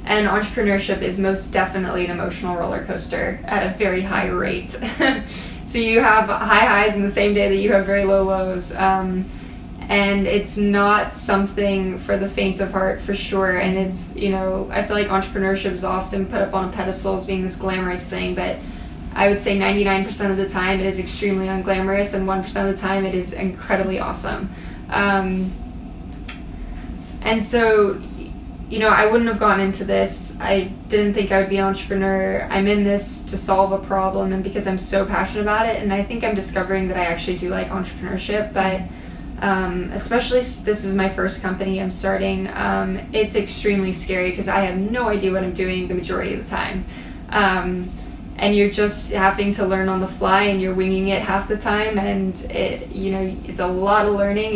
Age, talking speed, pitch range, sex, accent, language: 20-39, 195 wpm, 190-205 Hz, female, American, English